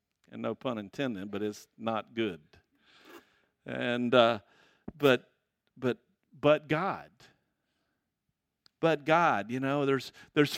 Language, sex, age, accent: English, male, 50-69, American